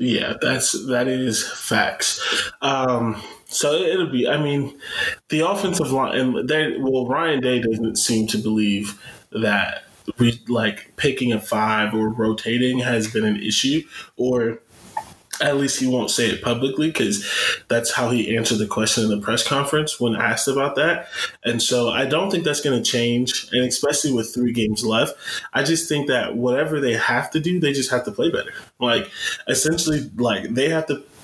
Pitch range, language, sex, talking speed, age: 115-140 Hz, English, male, 180 wpm, 20-39